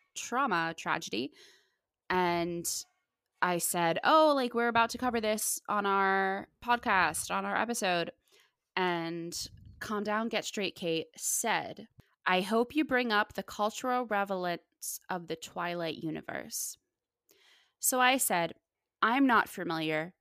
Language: English